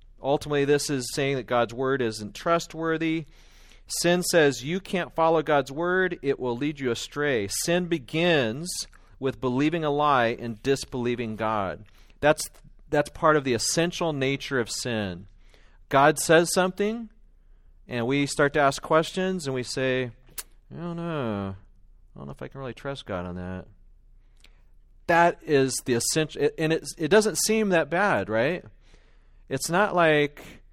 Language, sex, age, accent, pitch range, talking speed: English, male, 40-59, American, 115-155 Hz, 155 wpm